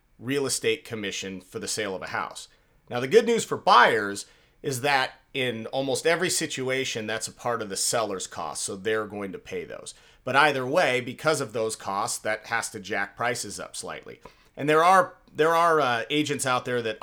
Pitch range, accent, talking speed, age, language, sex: 110-145 Hz, American, 205 wpm, 40-59, English, male